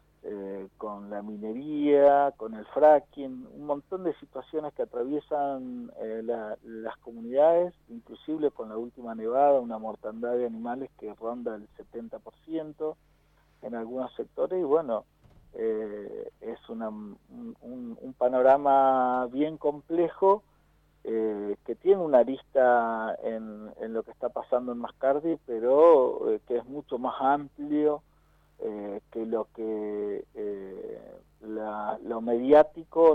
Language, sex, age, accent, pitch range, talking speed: Spanish, male, 40-59, Argentinian, 110-150 Hz, 125 wpm